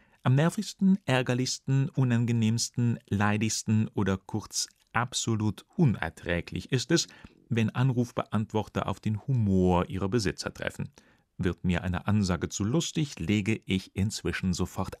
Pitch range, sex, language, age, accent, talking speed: 95-130 Hz, male, German, 40-59, German, 115 wpm